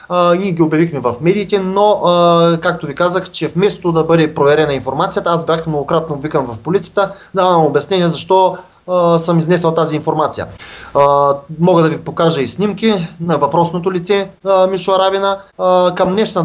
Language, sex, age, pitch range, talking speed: Czech, male, 20-39, 150-185 Hz, 150 wpm